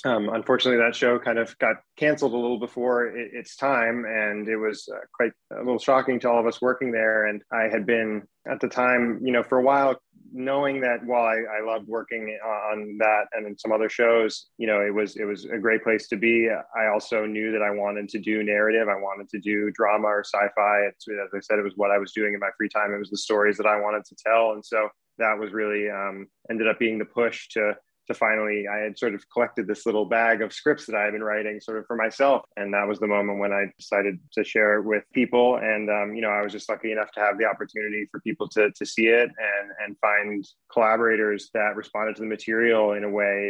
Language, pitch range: English, 105-115 Hz